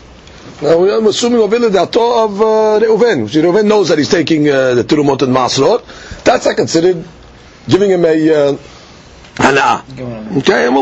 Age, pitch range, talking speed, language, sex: 50-69, 155-225 Hz, 190 wpm, English, male